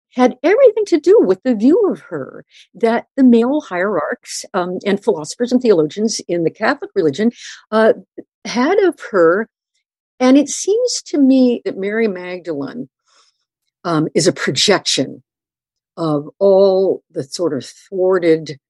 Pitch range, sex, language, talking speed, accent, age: 160-245 Hz, female, English, 140 wpm, American, 50-69